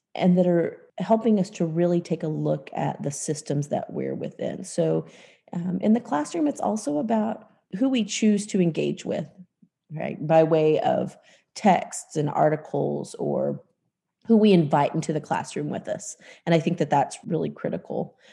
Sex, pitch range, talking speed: female, 165-210 Hz, 175 wpm